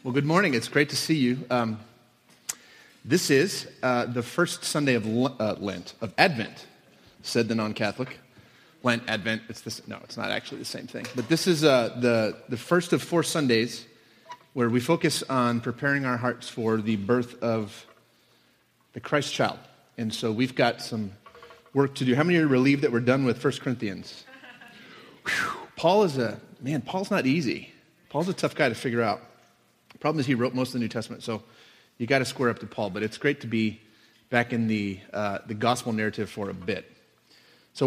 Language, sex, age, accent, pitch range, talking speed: English, male, 30-49, American, 115-150 Hz, 200 wpm